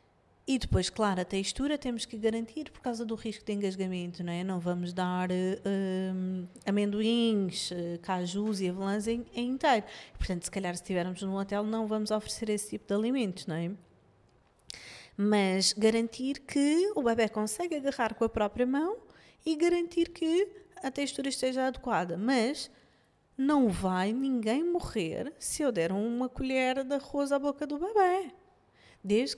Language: Portuguese